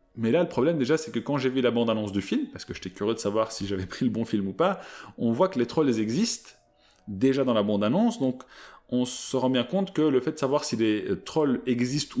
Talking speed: 260 wpm